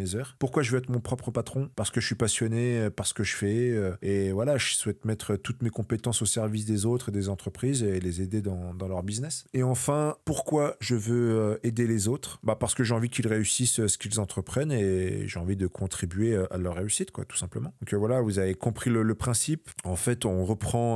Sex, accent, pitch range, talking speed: male, French, 100-125 Hz, 230 wpm